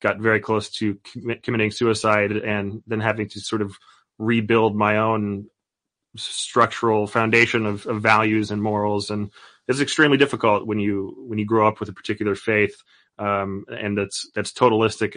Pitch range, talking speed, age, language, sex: 100-115 Hz, 160 wpm, 30-49, English, male